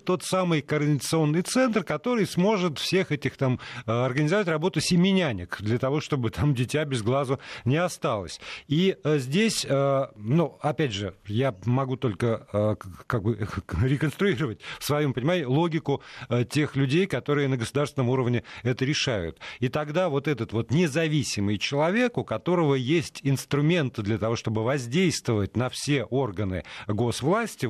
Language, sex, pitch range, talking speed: Russian, male, 120-165 Hz, 135 wpm